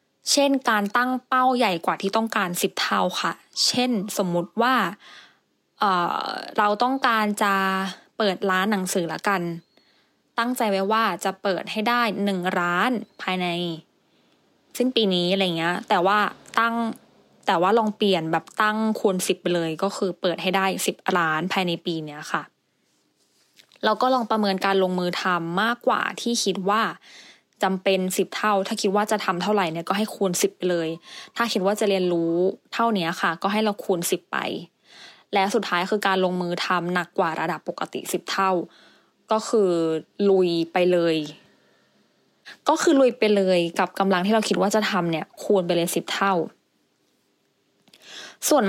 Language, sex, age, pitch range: English, female, 20-39, 180-220 Hz